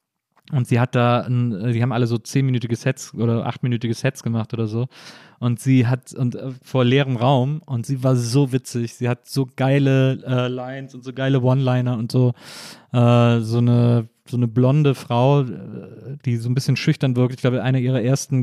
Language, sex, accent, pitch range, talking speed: German, male, German, 120-140 Hz, 190 wpm